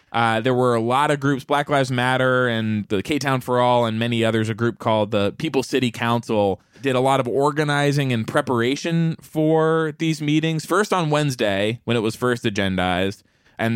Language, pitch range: English, 110-140 Hz